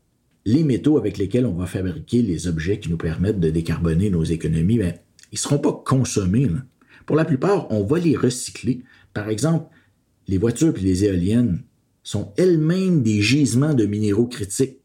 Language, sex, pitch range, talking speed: French, male, 100-150 Hz, 175 wpm